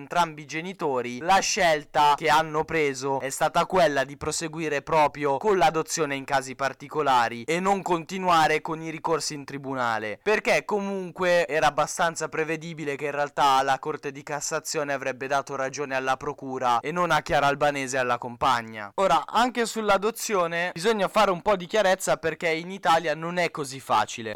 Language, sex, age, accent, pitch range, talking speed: Italian, male, 10-29, native, 140-180 Hz, 170 wpm